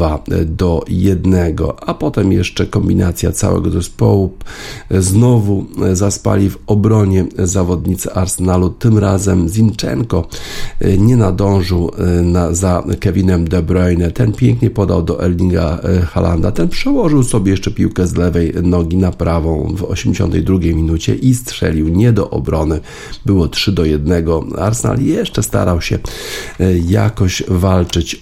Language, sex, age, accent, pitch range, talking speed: Polish, male, 50-69, native, 85-105 Hz, 125 wpm